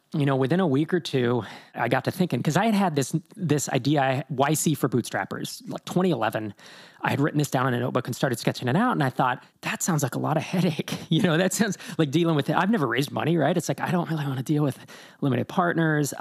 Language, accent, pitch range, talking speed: English, American, 125-160 Hz, 260 wpm